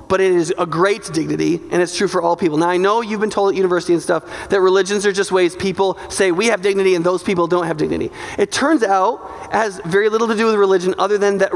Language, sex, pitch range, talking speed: English, male, 185-265 Hz, 270 wpm